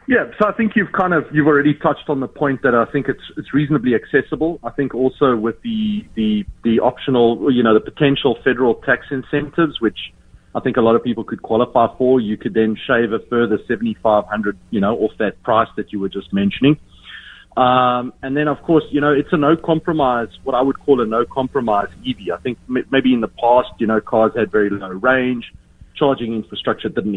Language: English